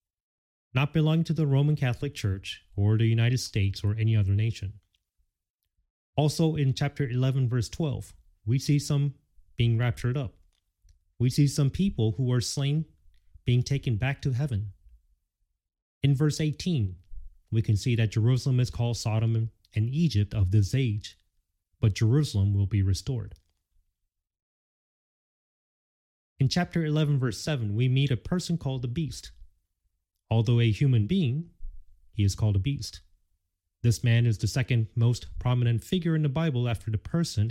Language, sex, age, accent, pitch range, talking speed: English, male, 30-49, American, 85-135 Hz, 150 wpm